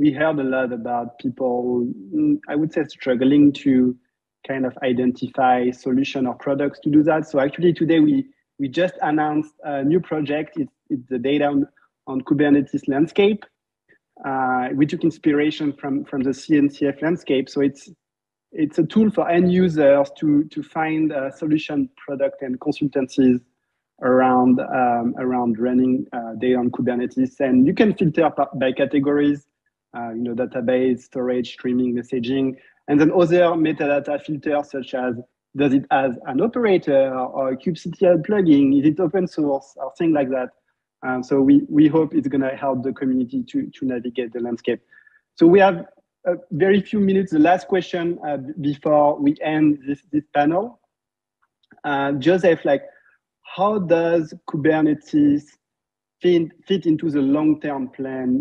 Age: 30-49